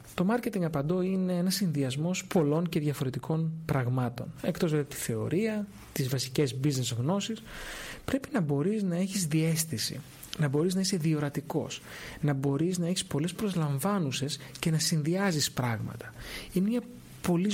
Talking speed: 145 wpm